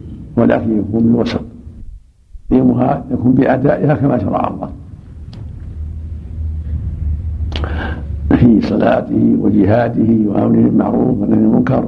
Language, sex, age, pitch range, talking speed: Arabic, male, 70-89, 80-120 Hz, 85 wpm